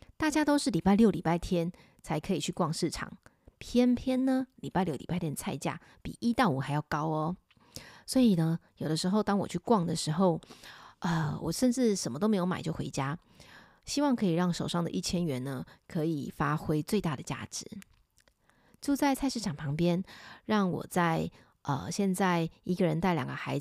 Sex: female